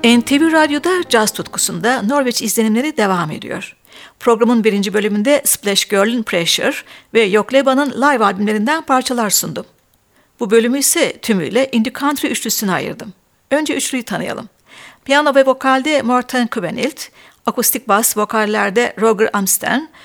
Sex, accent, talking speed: female, native, 125 wpm